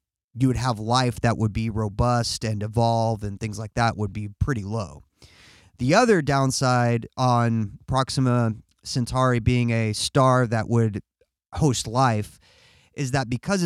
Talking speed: 150 wpm